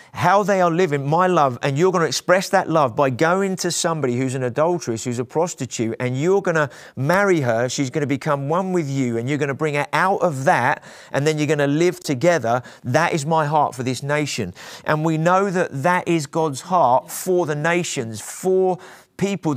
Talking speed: 220 wpm